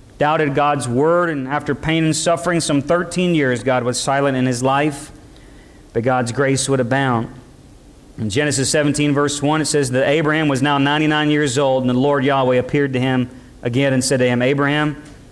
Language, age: English, 40-59